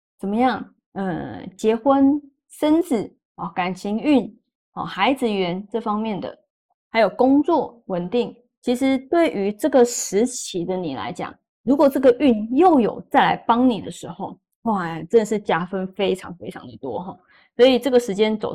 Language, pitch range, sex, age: Chinese, 200-270 Hz, female, 20-39